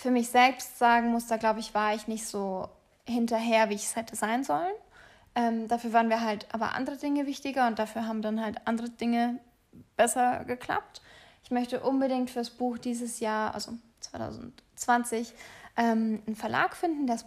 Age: 20-39